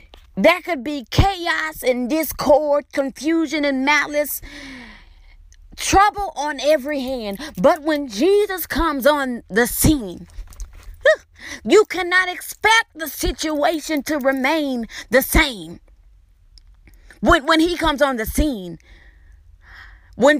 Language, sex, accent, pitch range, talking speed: English, female, American, 260-345 Hz, 110 wpm